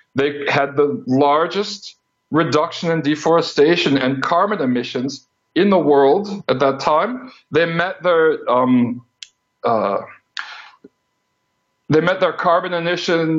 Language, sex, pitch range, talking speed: English, male, 140-180 Hz, 115 wpm